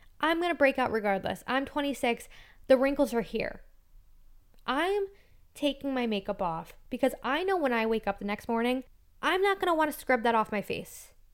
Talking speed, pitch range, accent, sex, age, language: 200 wpm, 210-250 Hz, American, female, 10-29, English